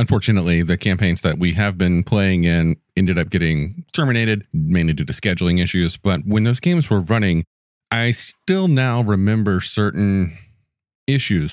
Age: 30-49